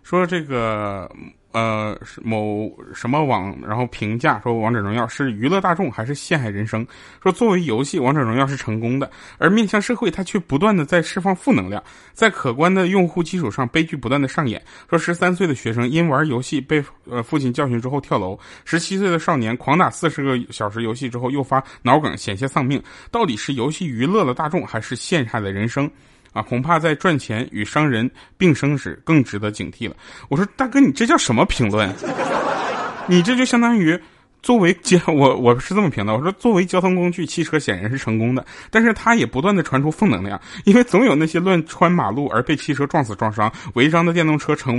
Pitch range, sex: 115-175 Hz, male